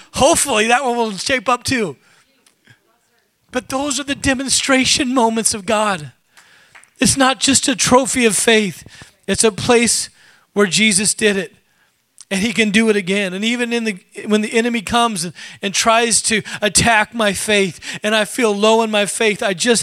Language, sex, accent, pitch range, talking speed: English, male, American, 185-225 Hz, 180 wpm